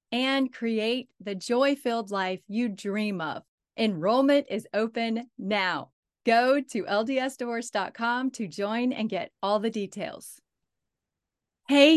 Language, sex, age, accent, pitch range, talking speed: English, female, 30-49, American, 200-245 Hz, 115 wpm